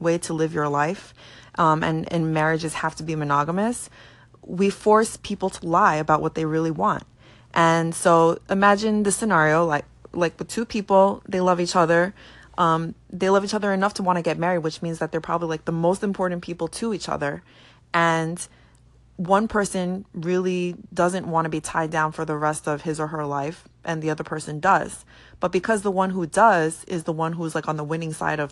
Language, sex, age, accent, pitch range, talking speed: English, female, 20-39, American, 155-185 Hz, 210 wpm